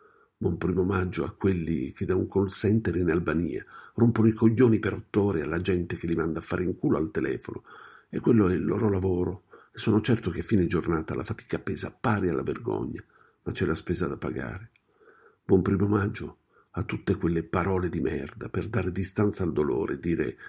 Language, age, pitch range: Italian, 50-69, 85-110 Hz